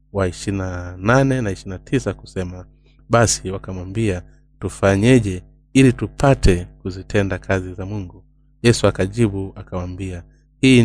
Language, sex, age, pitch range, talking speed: Swahili, male, 30-49, 95-120 Hz, 100 wpm